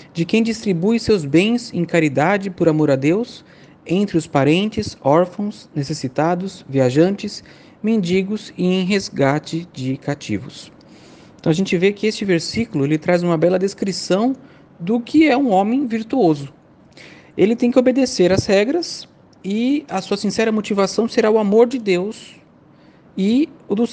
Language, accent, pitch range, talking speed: Portuguese, Brazilian, 165-235 Hz, 150 wpm